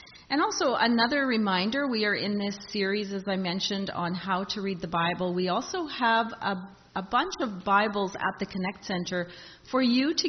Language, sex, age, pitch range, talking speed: English, female, 40-59, 185-240 Hz, 190 wpm